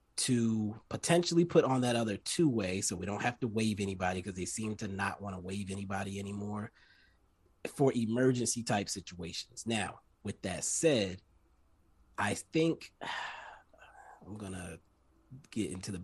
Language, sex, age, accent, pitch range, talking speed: English, male, 30-49, American, 95-115 Hz, 145 wpm